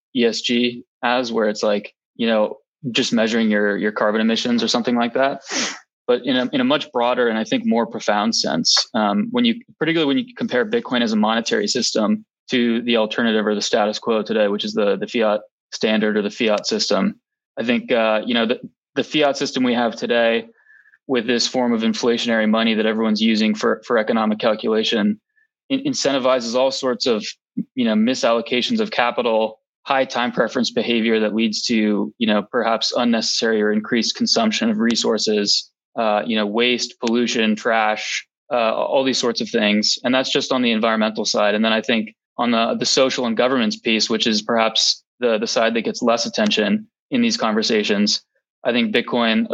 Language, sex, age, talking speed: English, male, 20-39, 190 wpm